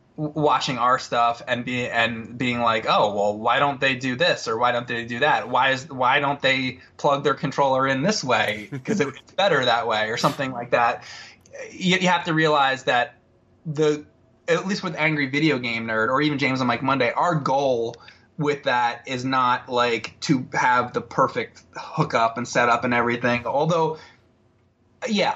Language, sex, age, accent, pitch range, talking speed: English, male, 20-39, American, 120-150 Hz, 185 wpm